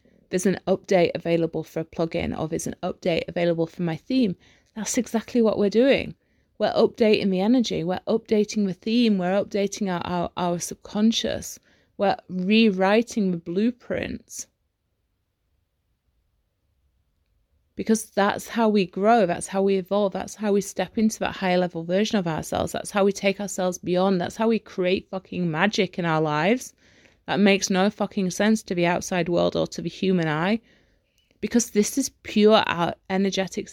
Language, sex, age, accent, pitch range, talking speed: English, female, 30-49, British, 175-210 Hz, 165 wpm